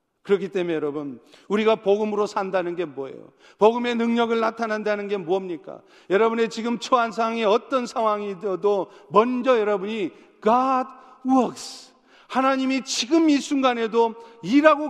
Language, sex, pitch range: Korean, male, 180-235 Hz